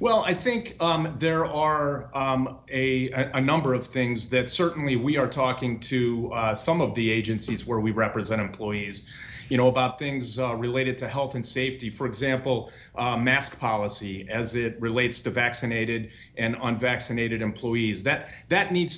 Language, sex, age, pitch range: English, male, 40-59, 120-150 Hz